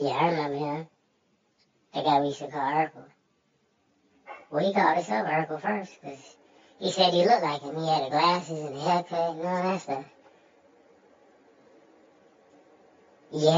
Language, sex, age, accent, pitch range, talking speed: English, male, 20-39, American, 150-205 Hz, 165 wpm